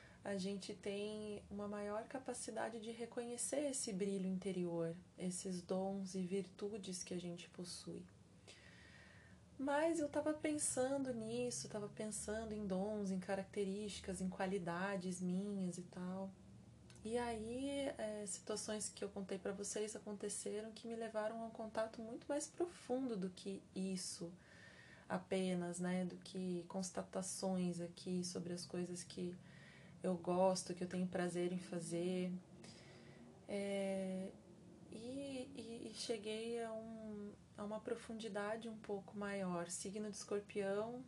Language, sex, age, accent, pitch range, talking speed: Portuguese, female, 20-39, Brazilian, 185-220 Hz, 135 wpm